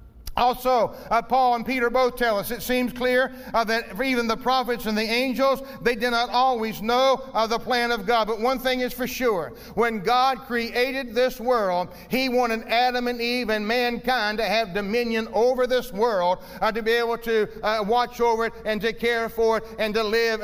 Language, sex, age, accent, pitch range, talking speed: English, male, 40-59, American, 220-250 Hz, 205 wpm